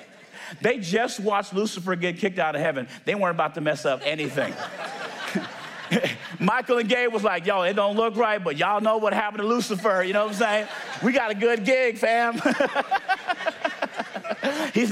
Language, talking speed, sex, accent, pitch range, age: English, 180 wpm, male, American, 210-275 Hz, 40-59